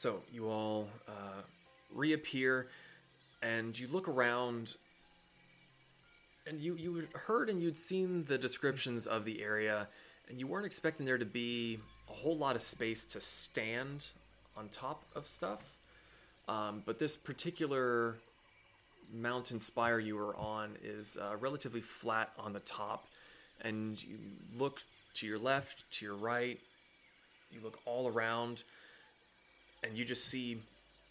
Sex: male